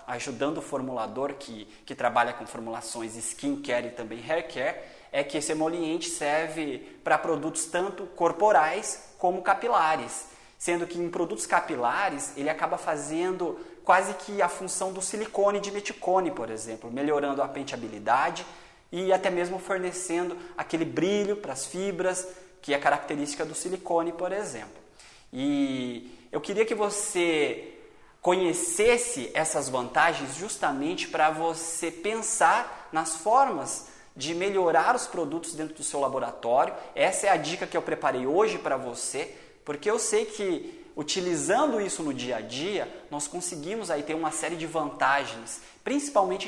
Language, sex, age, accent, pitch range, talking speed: Portuguese, male, 20-39, Brazilian, 150-195 Hz, 145 wpm